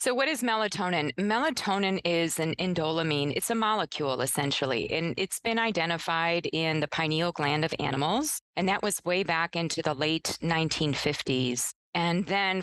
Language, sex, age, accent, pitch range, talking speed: English, female, 40-59, American, 160-210 Hz, 155 wpm